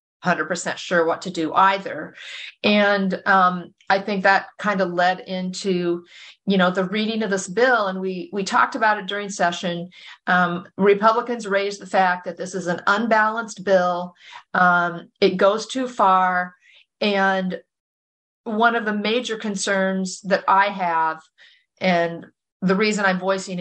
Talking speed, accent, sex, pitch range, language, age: 155 wpm, American, female, 175-205 Hz, English, 50-69